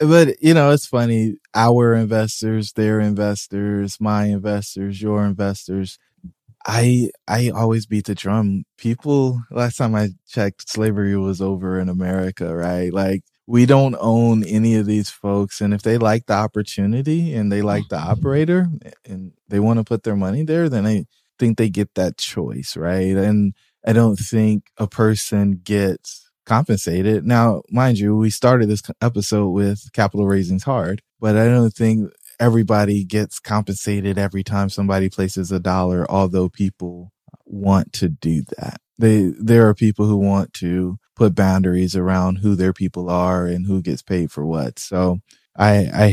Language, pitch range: English, 95-115 Hz